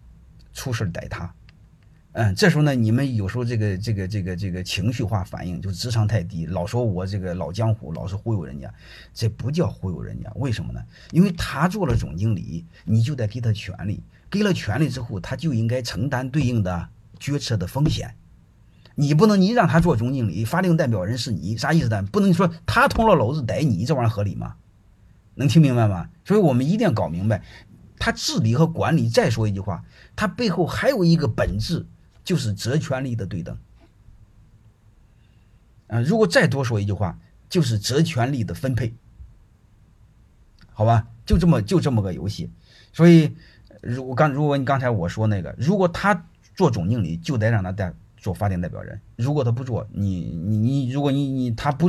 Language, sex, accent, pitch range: Chinese, male, native, 100-135 Hz